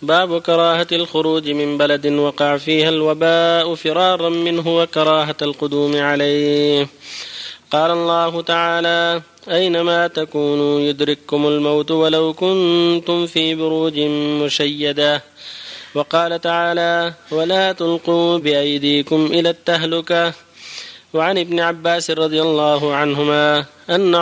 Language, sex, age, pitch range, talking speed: Arabic, male, 30-49, 150-170 Hz, 95 wpm